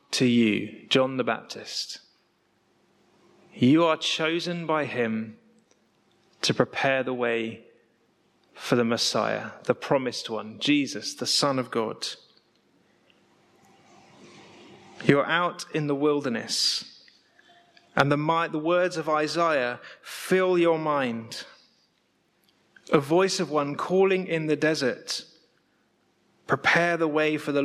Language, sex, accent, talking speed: English, male, British, 115 wpm